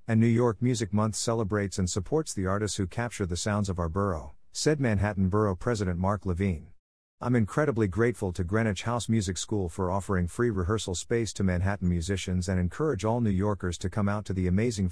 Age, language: 50-69, English